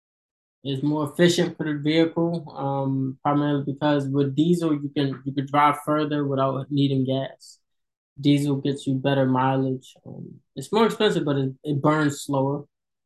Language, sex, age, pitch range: English, male, 10-29, 140-170 Hz